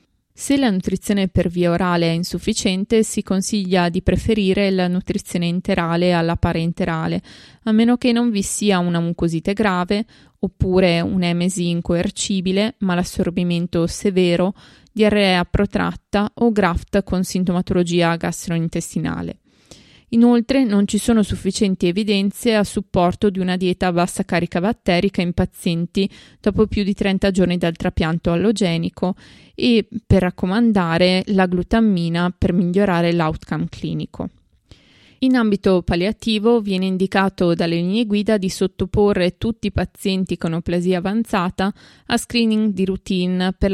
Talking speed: 130 wpm